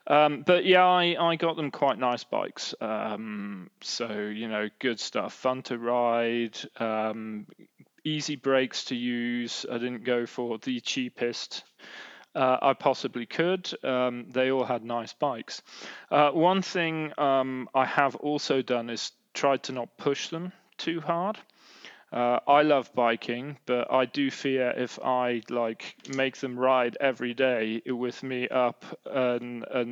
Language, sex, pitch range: English, male, 120-135 Hz